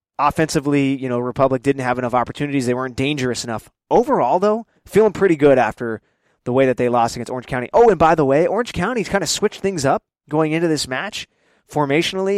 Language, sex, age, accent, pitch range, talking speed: English, male, 20-39, American, 125-160 Hz, 210 wpm